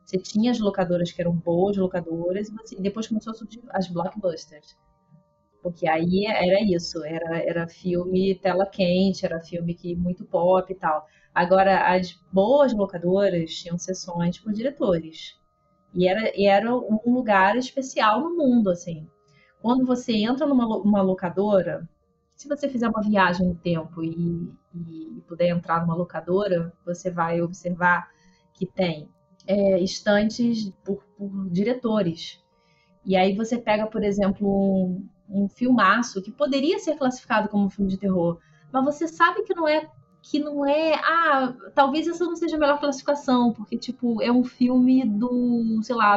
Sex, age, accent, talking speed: female, 20-39, Brazilian, 155 wpm